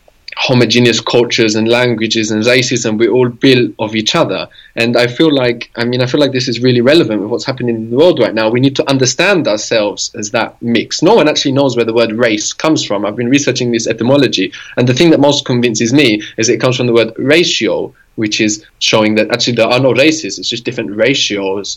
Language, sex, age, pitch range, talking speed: English, male, 20-39, 115-140 Hz, 230 wpm